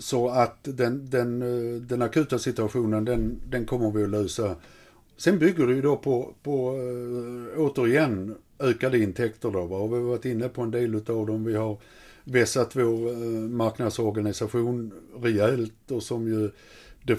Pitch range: 105-120 Hz